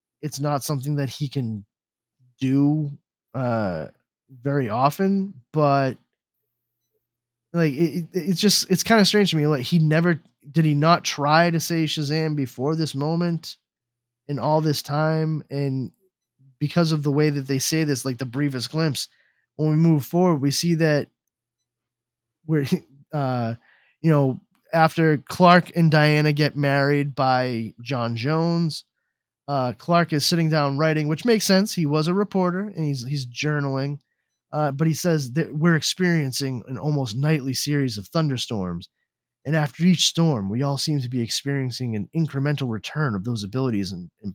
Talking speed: 160 wpm